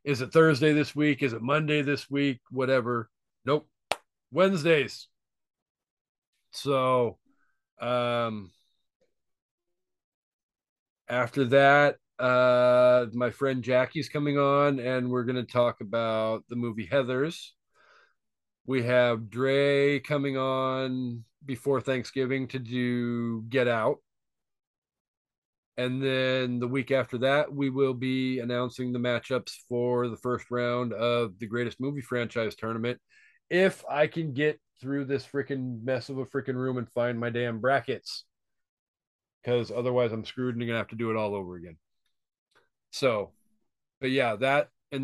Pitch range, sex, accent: 120-140 Hz, male, American